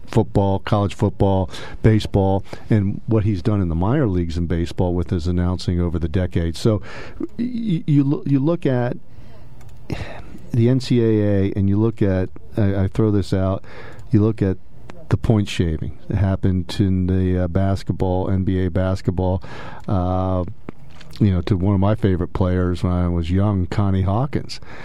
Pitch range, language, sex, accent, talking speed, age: 95-115 Hz, English, male, American, 155 wpm, 50-69